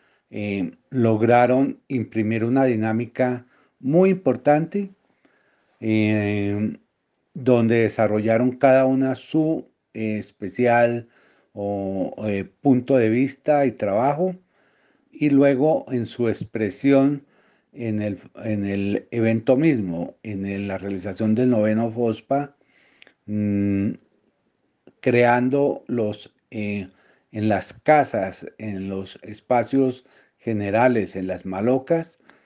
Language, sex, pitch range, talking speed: Spanish, male, 105-135 Hz, 95 wpm